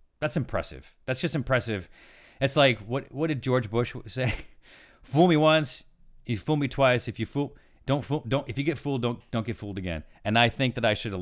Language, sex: English, male